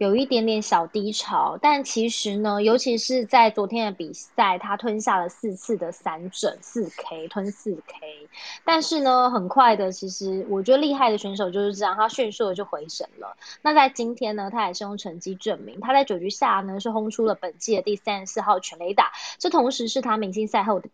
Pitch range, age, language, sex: 200-250 Hz, 20-39, Chinese, female